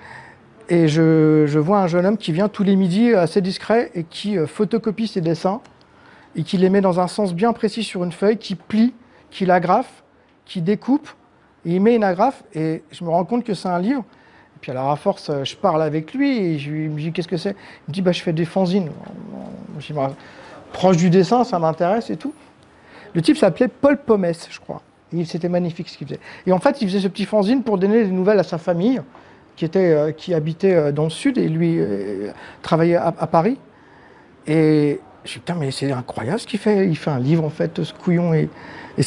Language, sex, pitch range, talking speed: French, male, 160-210 Hz, 225 wpm